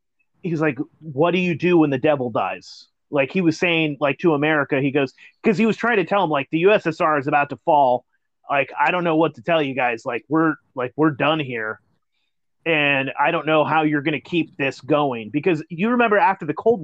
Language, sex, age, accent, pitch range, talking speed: English, male, 30-49, American, 145-175 Hz, 230 wpm